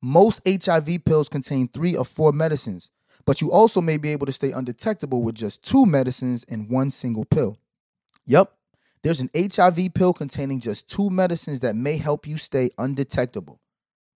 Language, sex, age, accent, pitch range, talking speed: English, male, 20-39, American, 125-175 Hz, 170 wpm